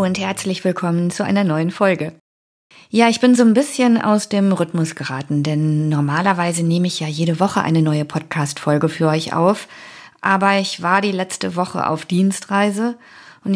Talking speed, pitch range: 175 wpm, 165-200 Hz